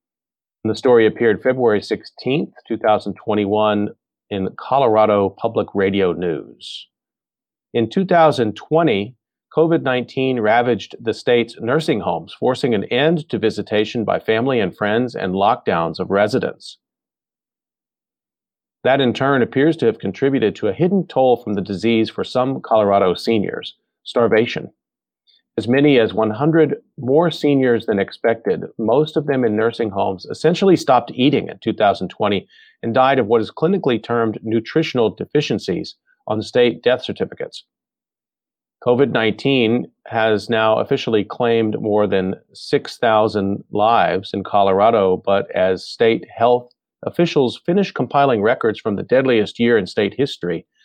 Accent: American